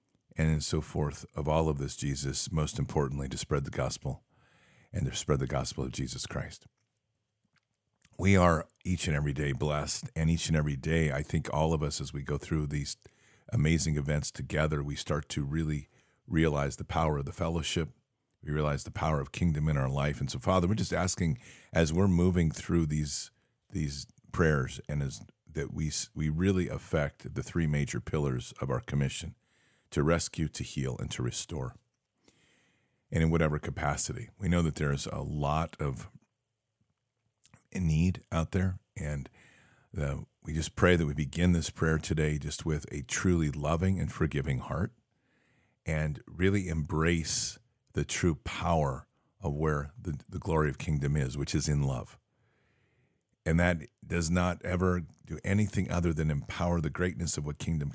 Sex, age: male, 50-69